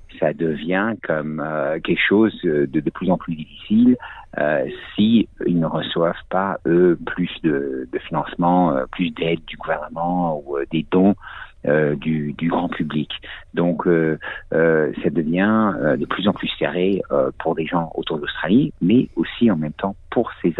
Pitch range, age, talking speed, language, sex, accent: 75-90 Hz, 50-69, 180 wpm, French, male, French